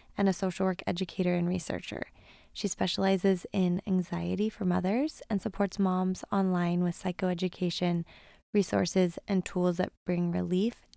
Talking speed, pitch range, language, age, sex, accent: 135 wpm, 180-205 Hz, English, 20-39, female, American